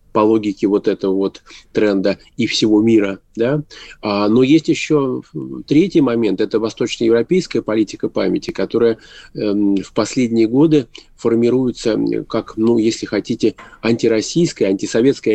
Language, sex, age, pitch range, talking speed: Russian, male, 20-39, 105-125 Hz, 130 wpm